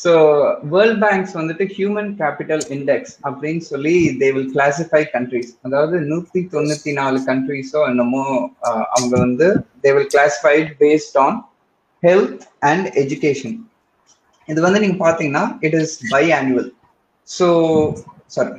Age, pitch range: 20-39, 140-190 Hz